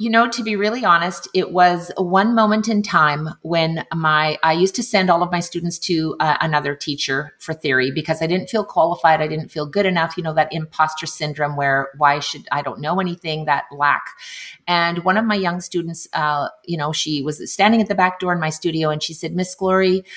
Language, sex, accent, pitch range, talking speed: English, female, American, 150-185 Hz, 225 wpm